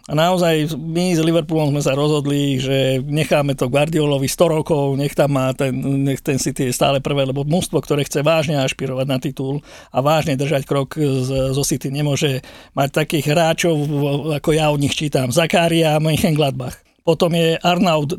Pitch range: 150-175 Hz